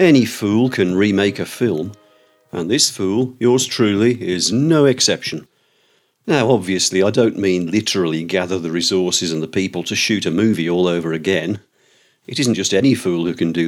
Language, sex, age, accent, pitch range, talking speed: English, male, 50-69, British, 85-125 Hz, 180 wpm